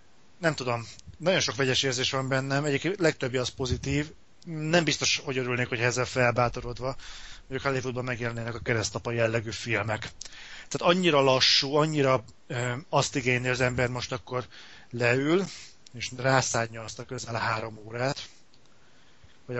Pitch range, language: 120-130 Hz, Hungarian